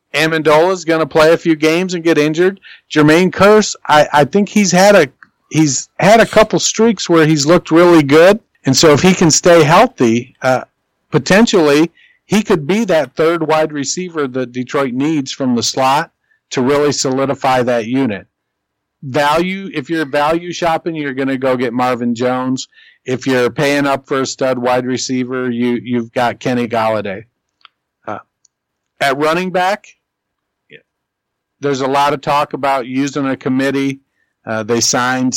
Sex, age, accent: male, 50-69, American